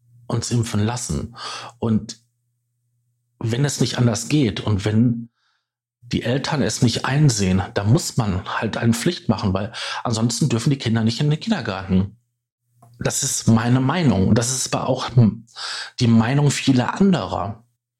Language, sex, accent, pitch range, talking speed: German, male, German, 110-130 Hz, 150 wpm